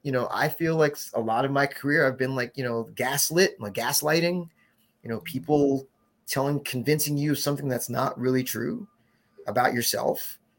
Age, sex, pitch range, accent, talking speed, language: 30-49, male, 125-180 Hz, American, 185 wpm, English